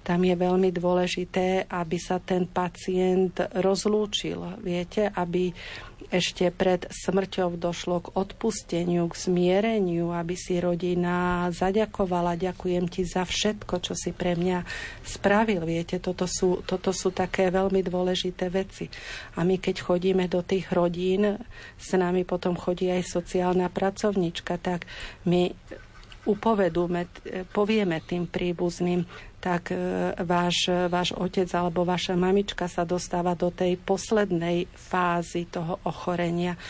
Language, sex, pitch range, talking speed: Slovak, female, 175-185 Hz, 125 wpm